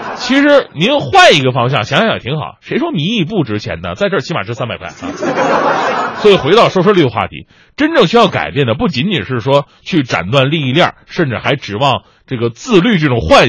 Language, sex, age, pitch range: Chinese, male, 30-49, 125-200 Hz